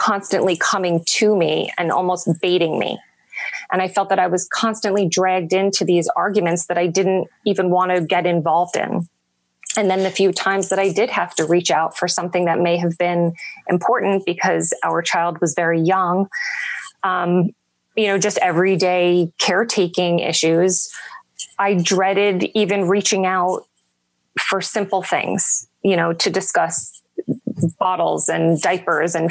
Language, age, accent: English, 20-39, American